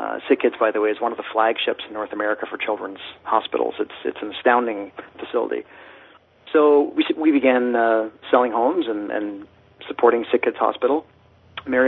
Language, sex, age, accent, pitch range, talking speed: English, male, 40-59, American, 115-135 Hz, 170 wpm